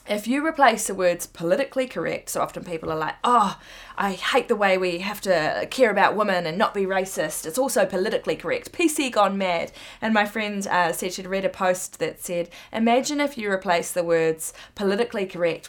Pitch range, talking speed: 175-220 Hz, 205 wpm